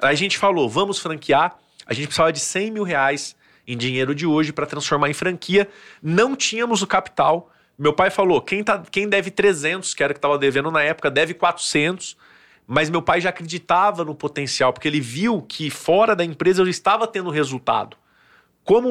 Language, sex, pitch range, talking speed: Portuguese, male, 155-200 Hz, 195 wpm